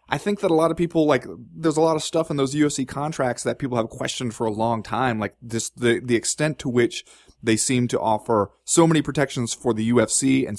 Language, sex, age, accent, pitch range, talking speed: English, male, 20-39, American, 115-150 Hz, 245 wpm